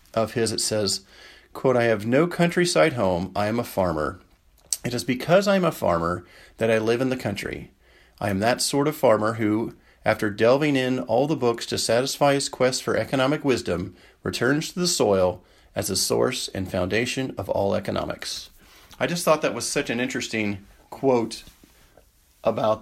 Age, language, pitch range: 40-59, English, 100-125 Hz